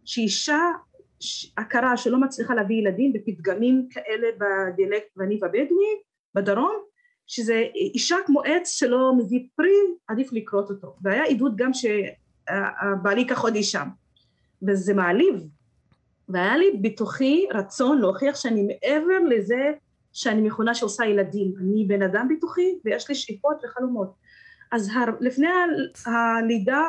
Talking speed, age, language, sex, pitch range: 100 wpm, 30-49, English, female, 215-290 Hz